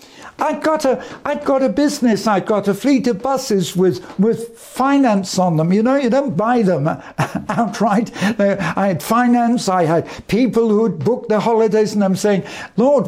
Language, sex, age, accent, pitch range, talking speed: English, male, 60-79, British, 195-265 Hz, 180 wpm